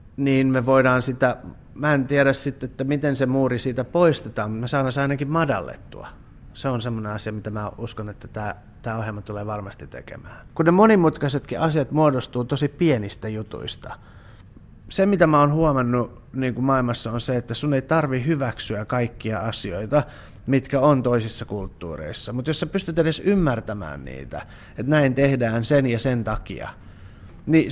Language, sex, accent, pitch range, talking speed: Finnish, male, native, 110-145 Hz, 170 wpm